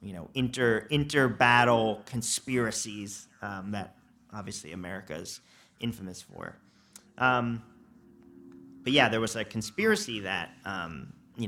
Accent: American